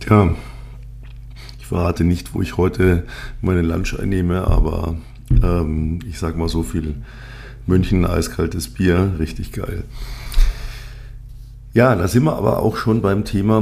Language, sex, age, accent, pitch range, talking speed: German, male, 50-69, German, 90-120 Hz, 135 wpm